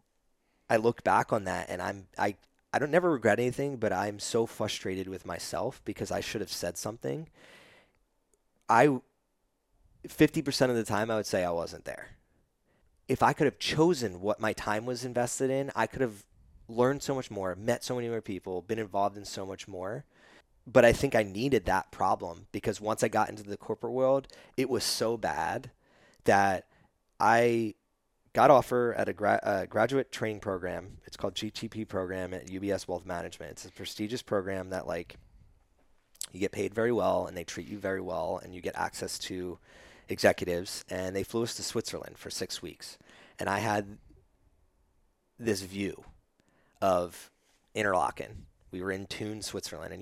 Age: 30-49